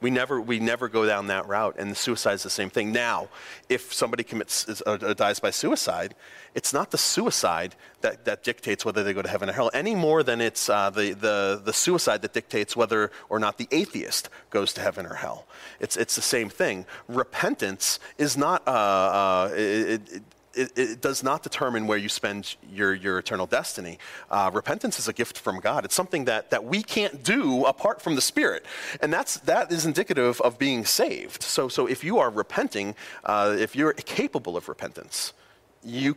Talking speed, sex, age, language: 200 wpm, male, 30-49, English